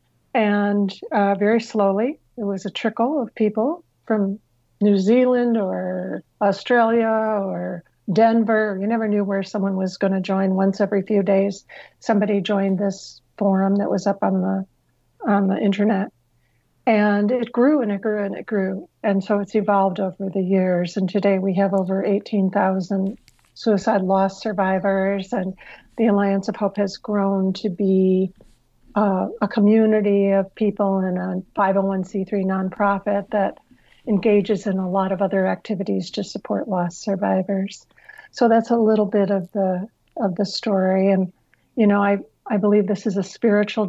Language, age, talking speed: English, 60-79, 155 wpm